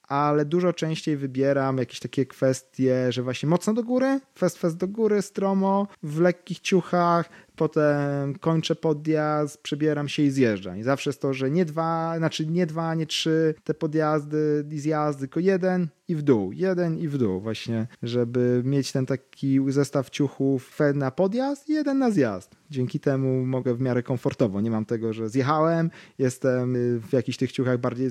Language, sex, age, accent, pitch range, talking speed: Polish, male, 30-49, native, 120-155 Hz, 175 wpm